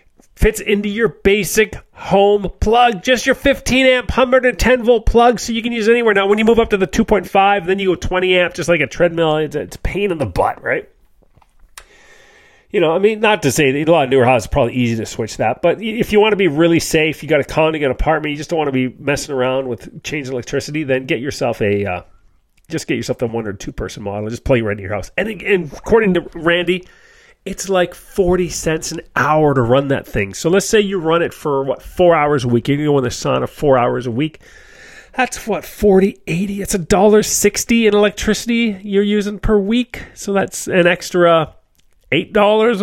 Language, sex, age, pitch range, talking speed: English, male, 40-59, 150-215 Hz, 230 wpm